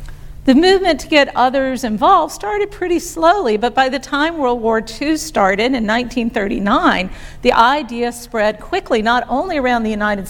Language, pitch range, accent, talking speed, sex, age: English, 210-260 Hz, American, 165 wpm, female, 50-69